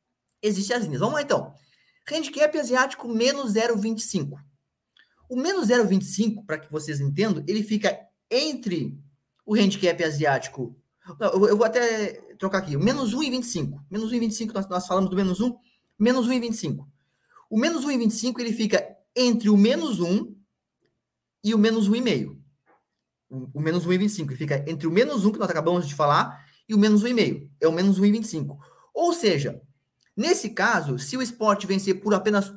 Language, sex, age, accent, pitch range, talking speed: Portuguese, male, 20-39, Brazilian, 165-230 Hz, 160 wpm